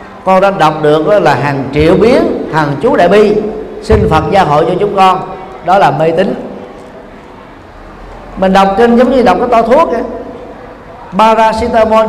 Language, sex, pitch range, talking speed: Vietnamese, male, 170-225 Hz, 170 wpm